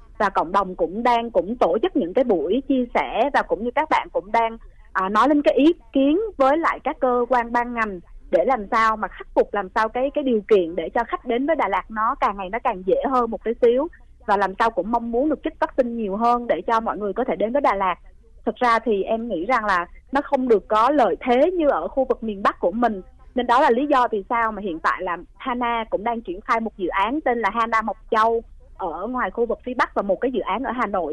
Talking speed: 275 wpm